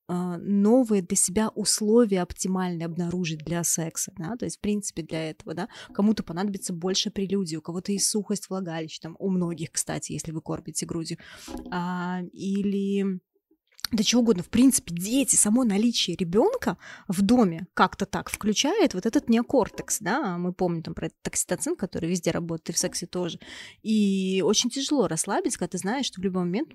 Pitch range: 175-210 Hz